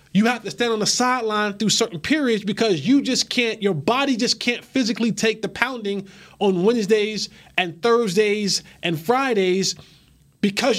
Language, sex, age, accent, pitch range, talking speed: English, male, 20-39, American, 190-240 Hz, 160 wpm